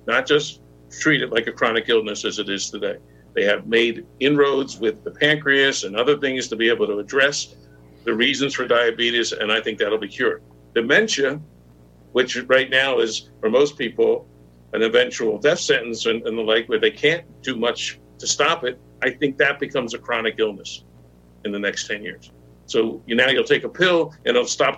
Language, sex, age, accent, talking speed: English, male, 60-79, American, 200 wpm